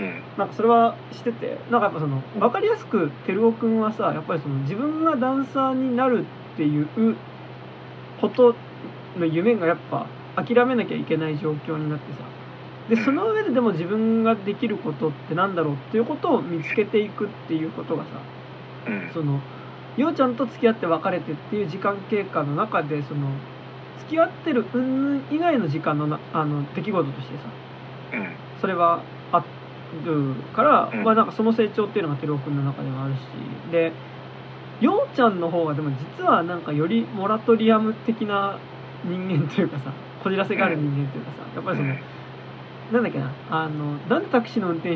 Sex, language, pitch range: male, Japanese, 140-225 Hz